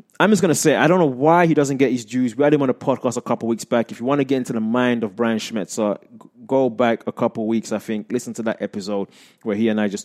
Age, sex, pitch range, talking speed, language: 20-39, male, 110-150 Hz, 315 wpm, English